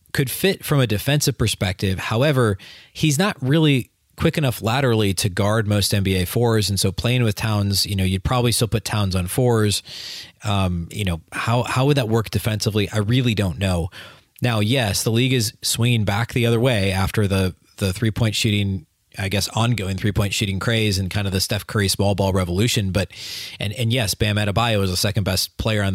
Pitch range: 95-115 Hz